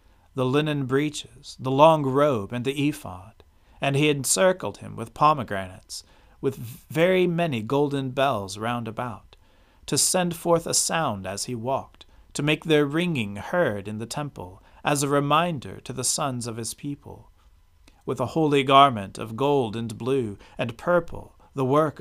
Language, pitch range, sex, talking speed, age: English, 100-145 Hz, male, 160 wpm, 40-59